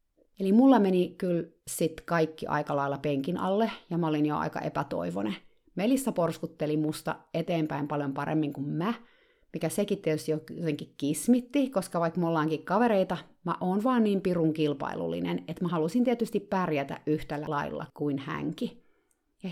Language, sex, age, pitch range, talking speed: Finnish, female, 30-49, 150-195 Hz, 150 wpm